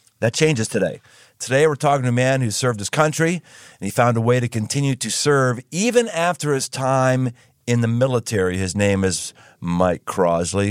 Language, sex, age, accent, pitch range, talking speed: English, male, 40-59, American, 110-140 Hz, 190 wpm